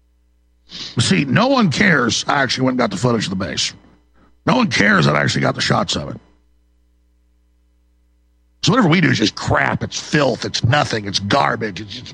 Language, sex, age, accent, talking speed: English, male, 50-69, American, 200 wpm